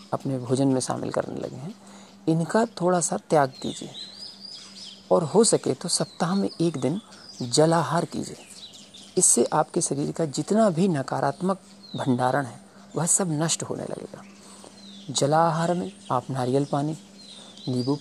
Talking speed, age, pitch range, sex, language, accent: 140 wpm, 40-59, 145-200 Hz, male, Hindi, native